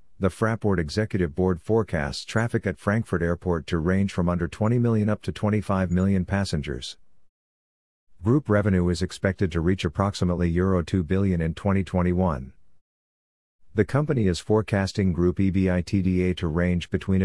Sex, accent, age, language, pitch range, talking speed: male, American, 50-69, English, 85-100 Hz, 145 wpm